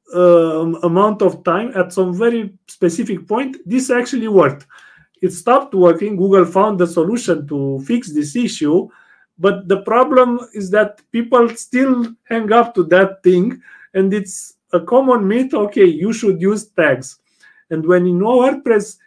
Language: English